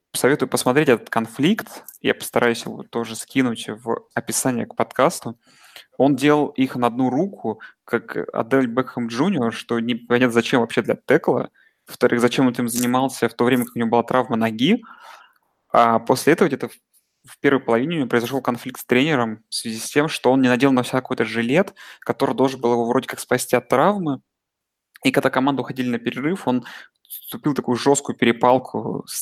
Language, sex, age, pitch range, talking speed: Russian, male, 20-39, 115-130 Hz, 180 wpm